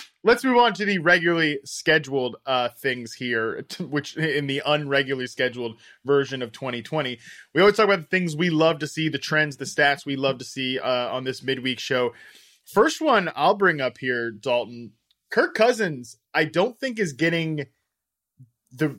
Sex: male